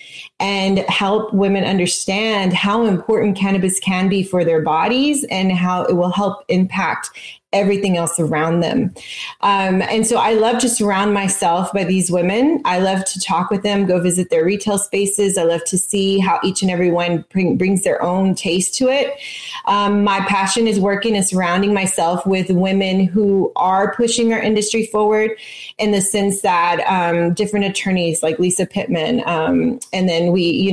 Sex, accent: female, American